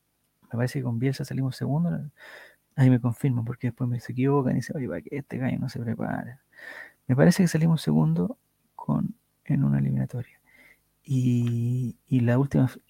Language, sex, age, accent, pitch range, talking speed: Spanish, male, 30-49, Argentinian, 145-210 Hz, 175 wpm